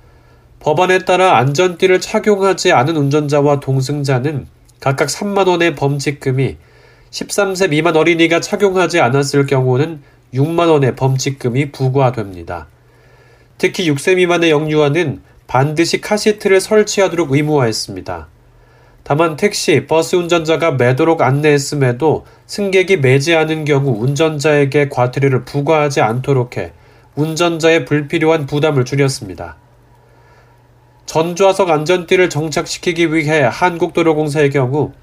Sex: male